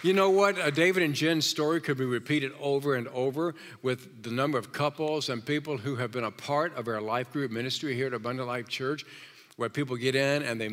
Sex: male